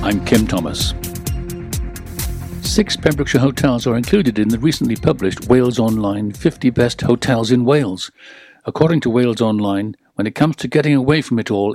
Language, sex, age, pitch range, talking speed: English, male, 60-79, 110-140 Hz, 165 wpm